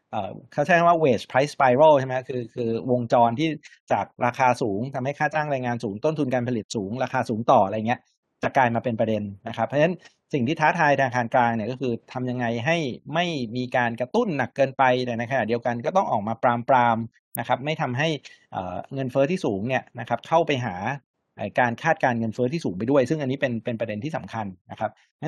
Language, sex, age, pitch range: Thai, male, 60-79, 115-145 Hz